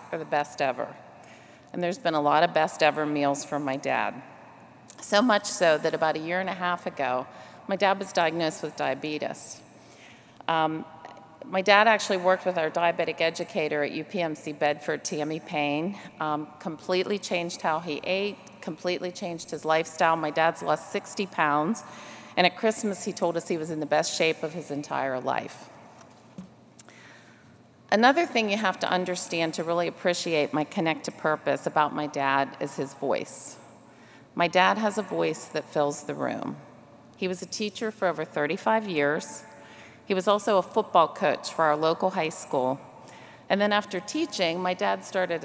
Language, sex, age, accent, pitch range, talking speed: English, female, 40-59, American, 150-185 Hz, 170 wpm